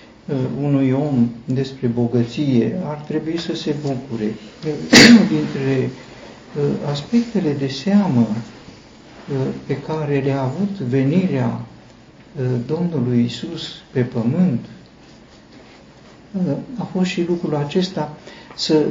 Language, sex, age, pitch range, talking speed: Romanian, male, 60-79, 120-155 Hz, 90 wpm